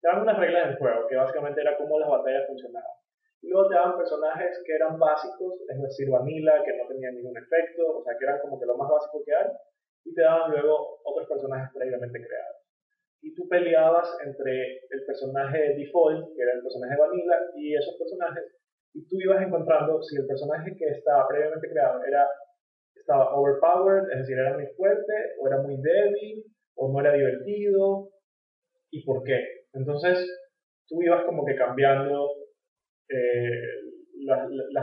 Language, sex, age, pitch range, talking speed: English, male, 20-39, 135-195 Hz, 175 wpm